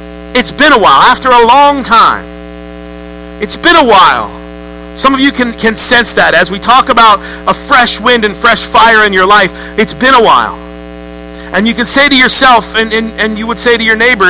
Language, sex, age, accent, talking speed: English, male, 50-69, American, 215 wpm